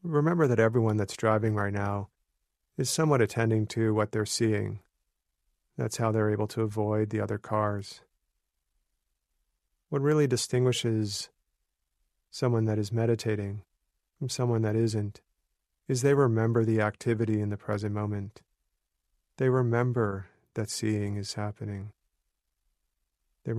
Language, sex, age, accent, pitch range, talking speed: English, male, 40-59, American, 100-115 Hz, 125 wpm